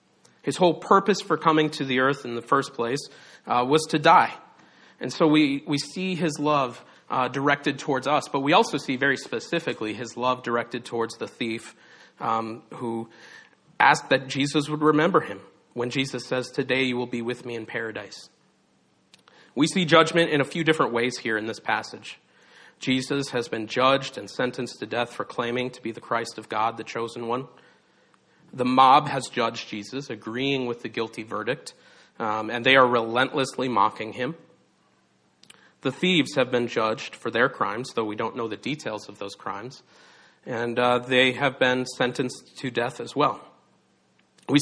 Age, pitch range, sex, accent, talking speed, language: 40-59, 115-145 Hz, male, American, 180 wpm, English